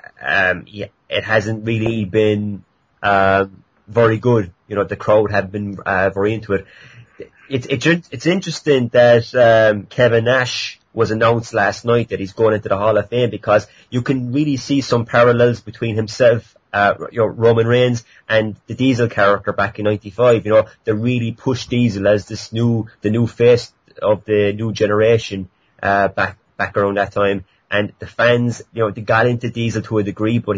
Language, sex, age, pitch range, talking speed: English, male, 30-49, 105-120 Hz, 185 wpm